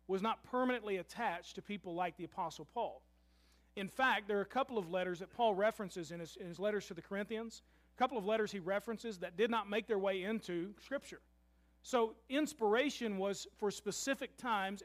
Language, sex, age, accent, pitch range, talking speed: English, male, 40-59, American, 170-225 Hz, 195 wpm